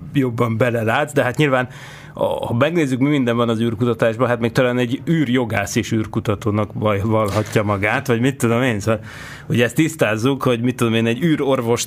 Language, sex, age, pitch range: Hungarian, male, 30-49, 115-145 Hz